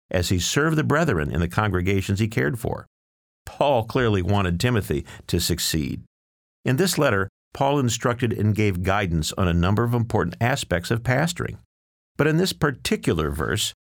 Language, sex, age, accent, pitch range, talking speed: English, male, 50-69, American, 90-120 Hz, 165 wpm